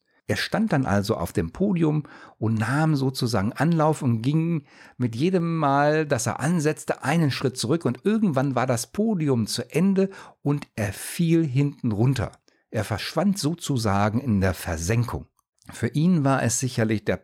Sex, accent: male, German